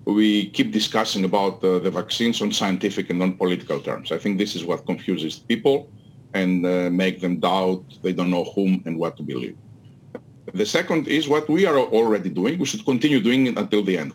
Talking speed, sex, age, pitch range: 205 wpm, male, 40-59, 95-120 Hz